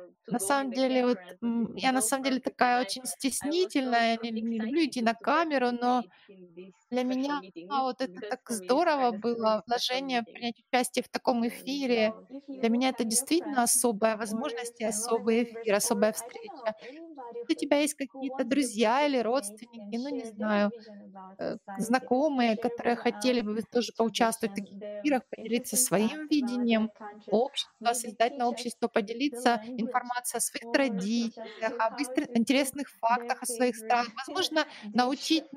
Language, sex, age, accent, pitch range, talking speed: Russian, female, 30-49, native, 225-265 Hz, 140 wpm